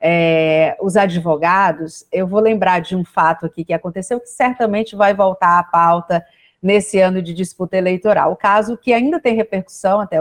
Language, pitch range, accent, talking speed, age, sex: Portuguese, 180-230 Hz, Brazilian, 170 wpm, 40-59, female